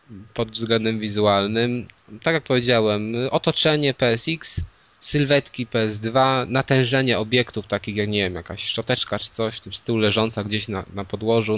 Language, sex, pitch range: Polish, male, 105-125 Hz